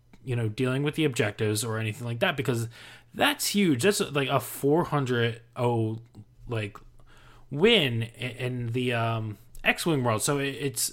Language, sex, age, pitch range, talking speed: English, male, 20-39, 110-140 Hz, 145 wpm